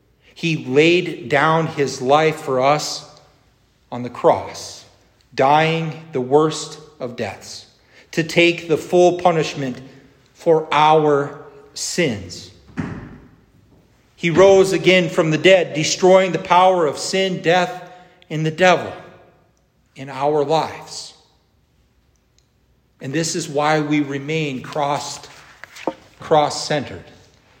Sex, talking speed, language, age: male, 110 wpm, English, 40-59